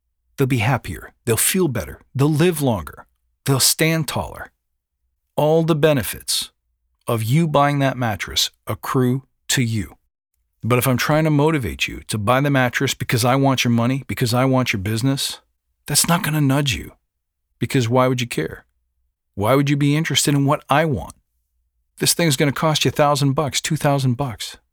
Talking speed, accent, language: 185 wpm, American, English